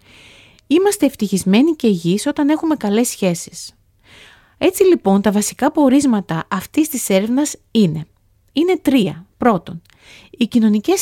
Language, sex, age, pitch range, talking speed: Greek, female, 30-49, 175-265 Hz, 120 wpm